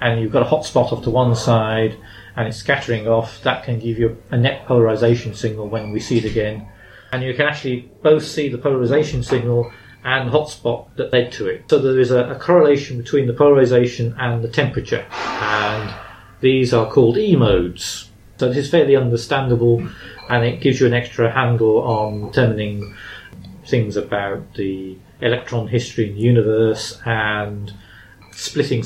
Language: English